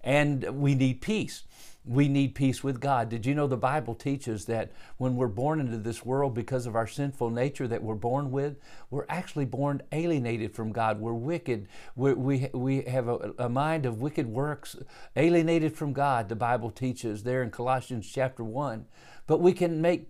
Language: English